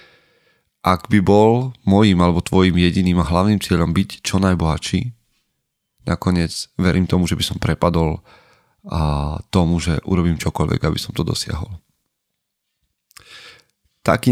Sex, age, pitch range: male, 30-49, 85-100 Hz